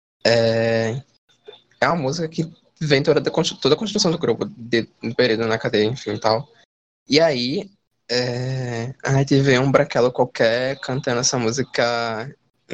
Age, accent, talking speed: 20-39, Brazilian, 130 wpm